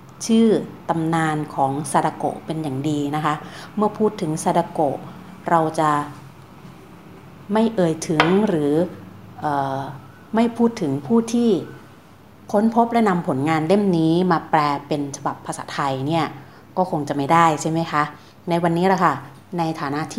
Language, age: Thai, 30-49